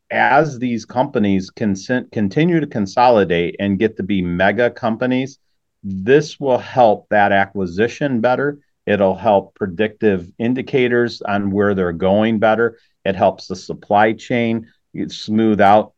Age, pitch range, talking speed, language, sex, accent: 40-59, 95-110 Hz, 130 wpm, English, male, American